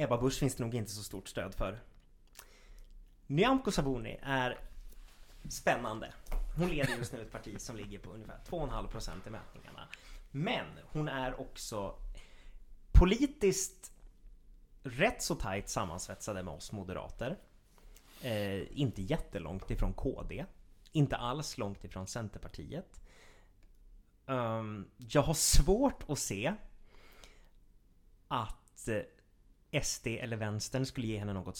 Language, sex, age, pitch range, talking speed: Swedish, male, 30-49, 100-145 Hz, 120 wpm